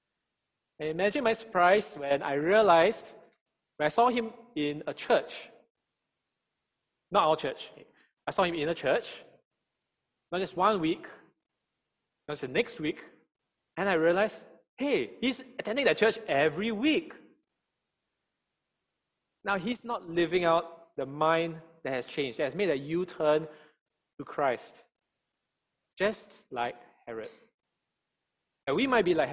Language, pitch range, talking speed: English, 150-220 Hz, 135 wpm